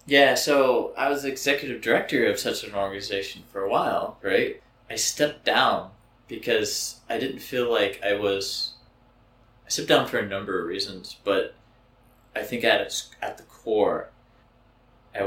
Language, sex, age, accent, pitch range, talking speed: English, male, 20-39, American, 105-125 Hz, 155 wpm